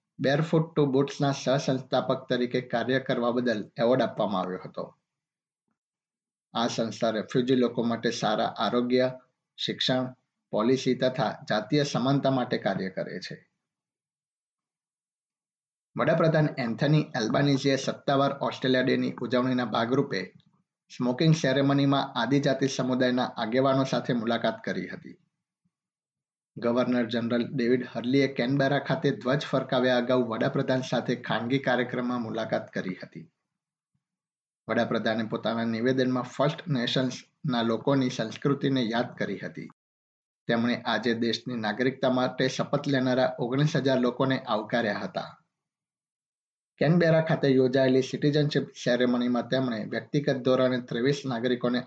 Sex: male